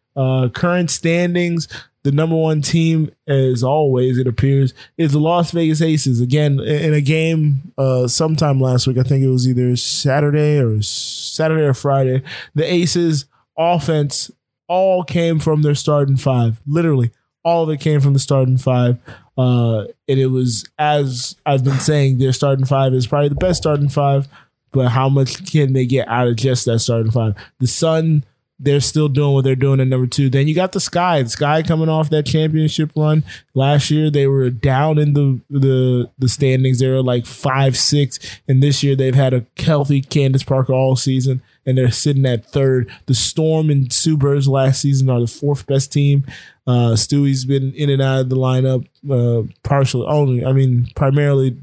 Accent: American